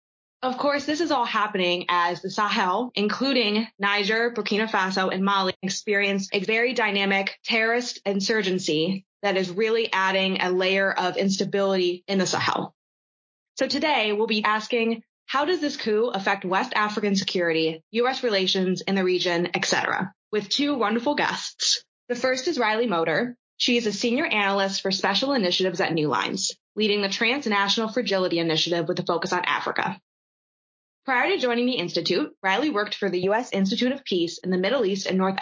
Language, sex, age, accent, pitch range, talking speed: English, female, 20-39, American, 185-240 Hz, 170 wpm